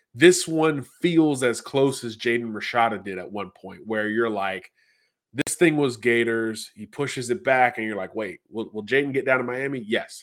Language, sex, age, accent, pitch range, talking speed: English, male, 30-49, American, 110-135 Hz, 210 wpm